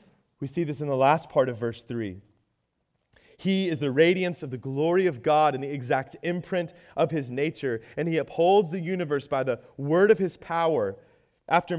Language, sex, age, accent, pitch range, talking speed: English, male, 30-49, American, 135-175 Hz, 195 wpm